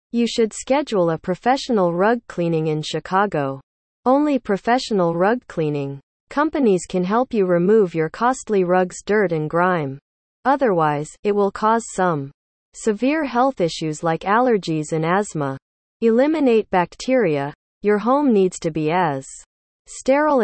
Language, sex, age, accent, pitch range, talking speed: English, female, 40-59, American, 160-230 Hz, 130 wpm